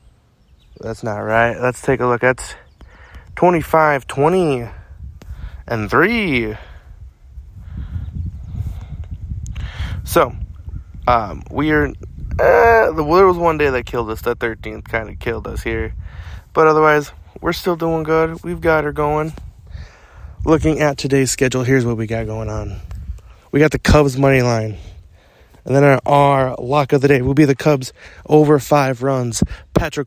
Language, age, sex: English, 20-39, male